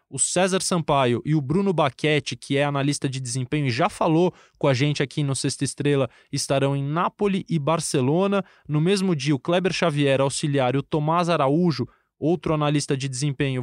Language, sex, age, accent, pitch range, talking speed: Portuguese, male, 20-39, Brazilian, 140-180 Hz, 185 wpm